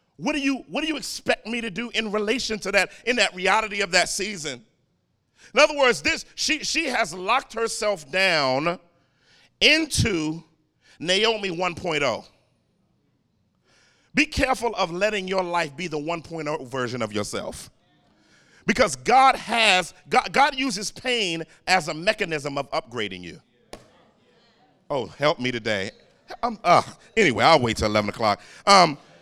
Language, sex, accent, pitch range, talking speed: English, male, American, 150-215 Hz, 145 wpm